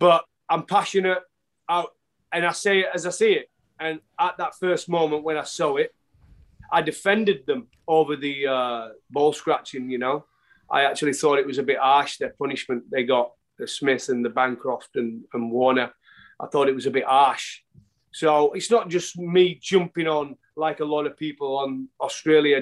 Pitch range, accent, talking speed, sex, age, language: 140-180 Hz, British, 190 wpm, male, 30-49, English